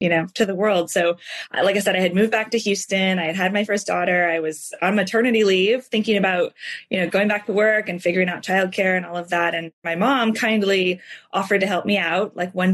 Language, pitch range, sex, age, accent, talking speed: English, 180-235 Hz, female, 20-39, American, 250 wpm